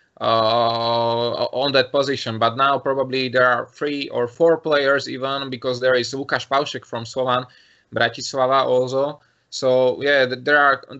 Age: 20-39